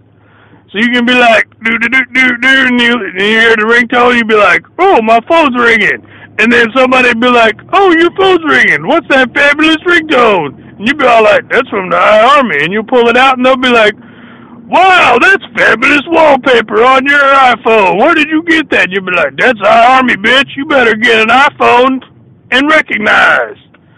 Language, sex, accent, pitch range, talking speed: English, male, American, 240-325 Hz, 200 wpm